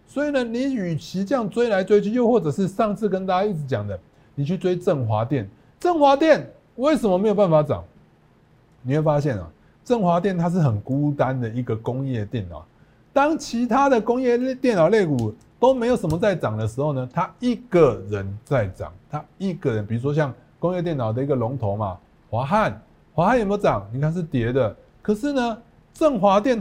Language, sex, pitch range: Chinese, male, 120-200 Hz